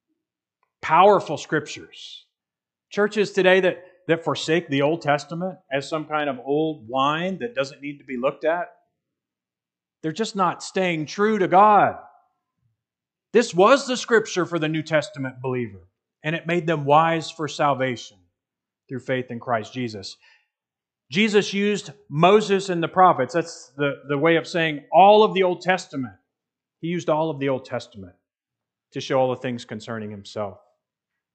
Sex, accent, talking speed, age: male, American, 155 wpm, 40-59